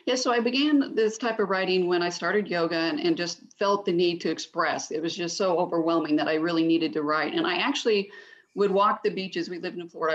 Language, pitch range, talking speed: English, 170-215 Hz, 255 wpm